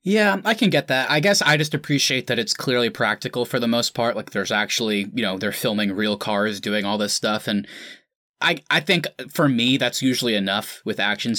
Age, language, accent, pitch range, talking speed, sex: 20-39, English, American, 110-150 Hz, 220 wpm, male